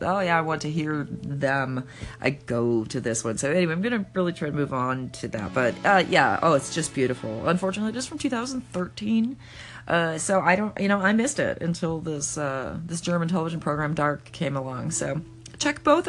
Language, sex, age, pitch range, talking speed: English, female, 30-49, 130-185 Hz, 215 wpm